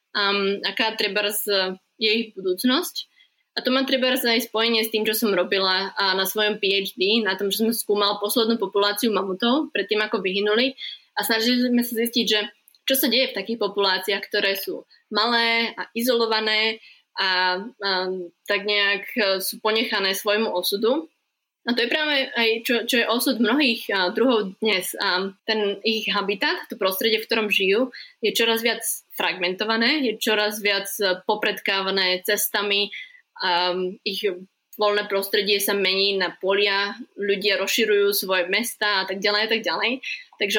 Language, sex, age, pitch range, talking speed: Slovak, female, 20-39, 195-230 Hz, 155 wpm